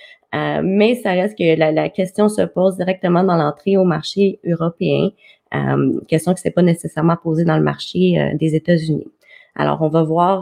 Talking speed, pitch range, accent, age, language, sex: 190 wpm, 165-200 Hz, Canadian, 20-39, French, female